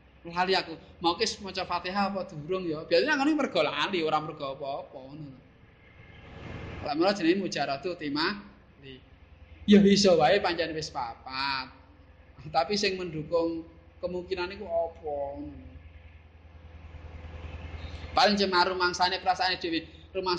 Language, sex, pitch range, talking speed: Indonesian, male, 125-185 Hz, 80 wpm